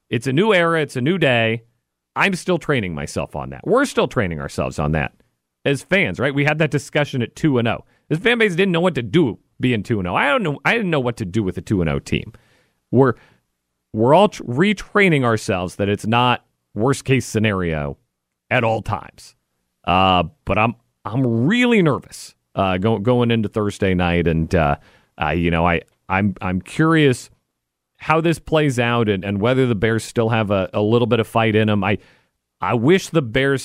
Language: English